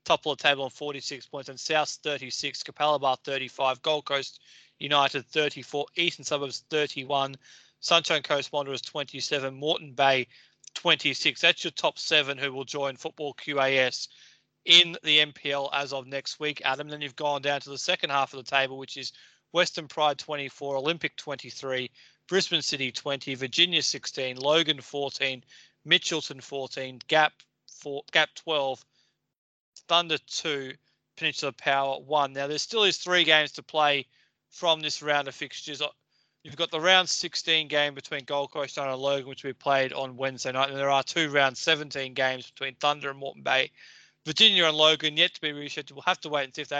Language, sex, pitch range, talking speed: English, male, 135-160 Hz, 175 wpm